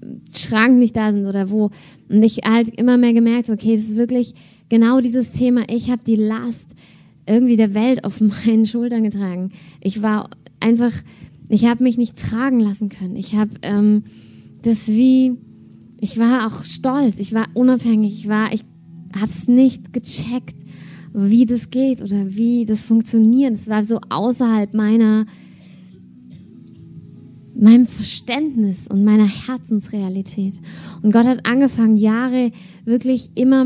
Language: German